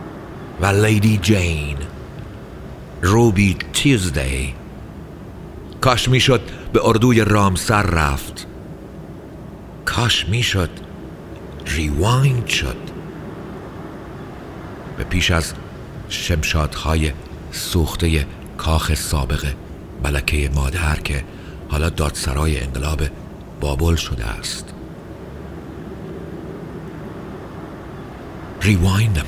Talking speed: 75 wpm